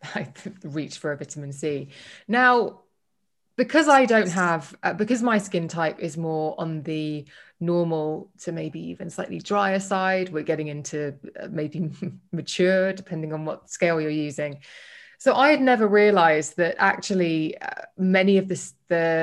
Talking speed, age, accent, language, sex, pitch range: 155 wpm, 20-39, British, English, female, 160-195 Hz